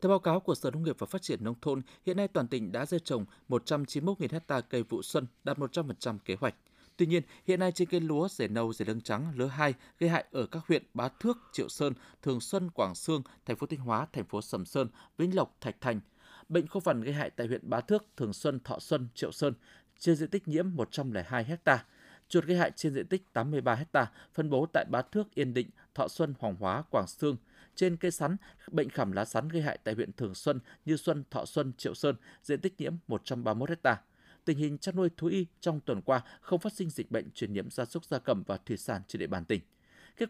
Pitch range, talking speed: 125-170 Hz, 240 wpm